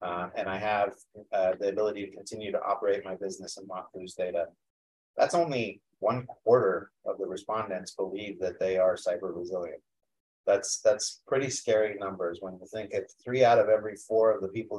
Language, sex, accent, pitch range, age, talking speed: English, male, American, 95-115 Hz, 30-49, 190 wpm